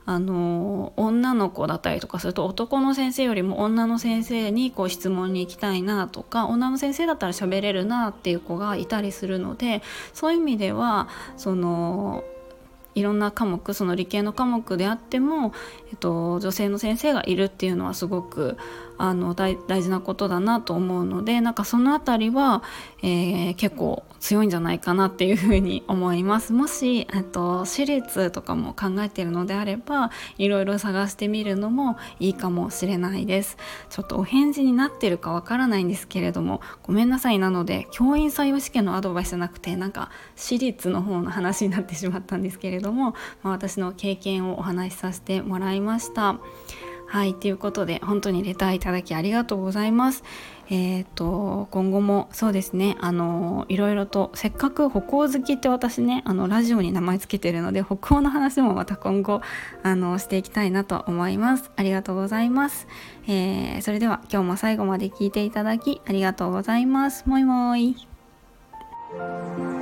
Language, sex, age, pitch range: Japanese, female, 20-39, 185-230 Hz